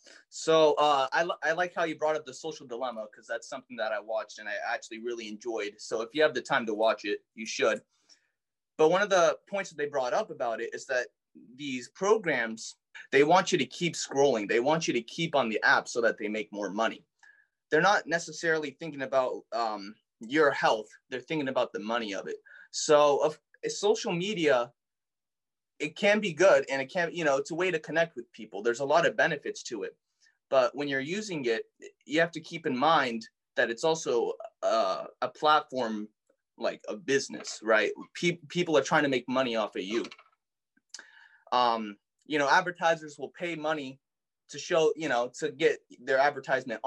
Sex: male